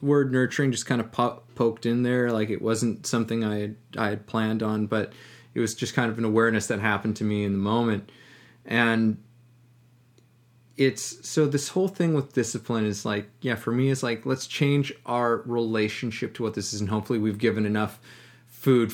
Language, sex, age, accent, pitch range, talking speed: English, male, 20-39, American, 110-125 Hz, 200 wpm